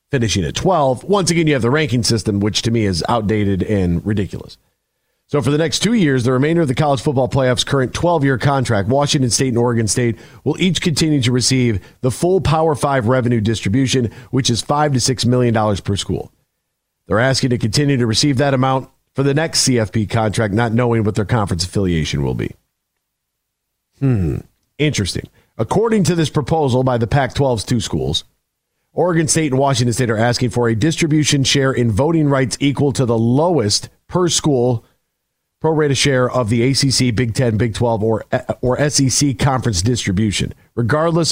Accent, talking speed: American, 185 wpm